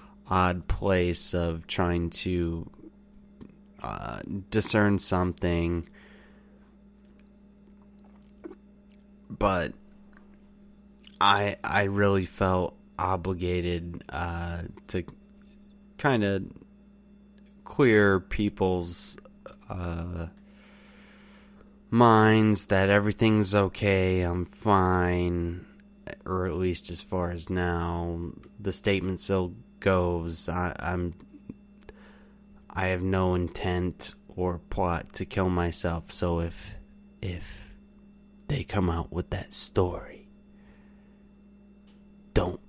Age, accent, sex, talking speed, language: 30-49, American, male, 80 wpm, English